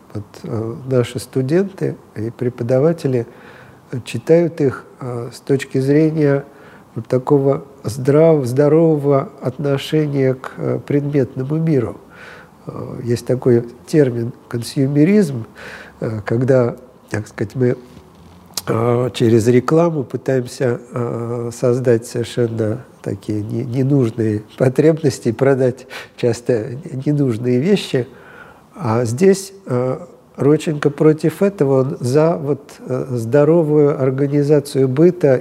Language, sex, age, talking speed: Russian, male, 50-69, 80 wpm